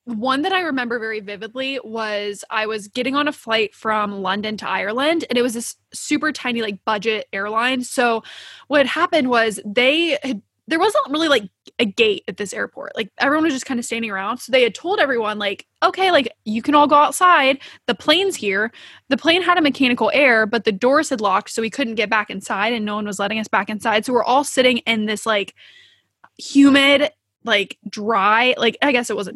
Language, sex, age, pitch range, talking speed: English, female, 20-39, 220-270 Hz, 215 wpm